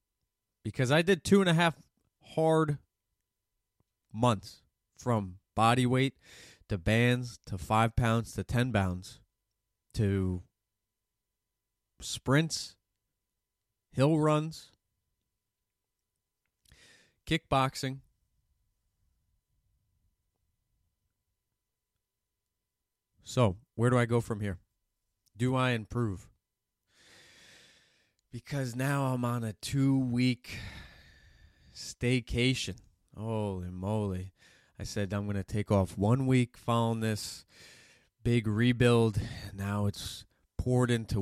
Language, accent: English, American